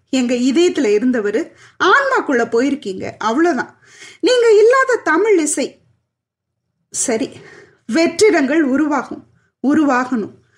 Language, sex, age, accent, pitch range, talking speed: Tamil, female, 20-39, native, 250-385 Hz, 80 wpm